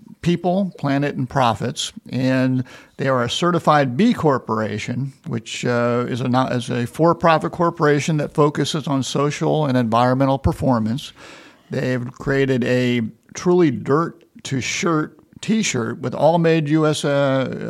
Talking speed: 130 wpm